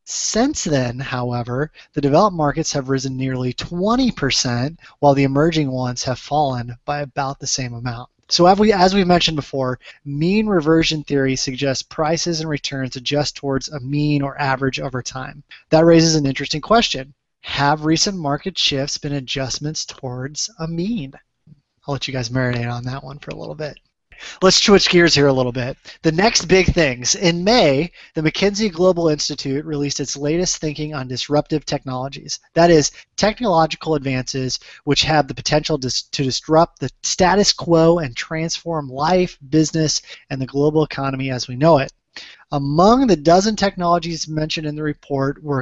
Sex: male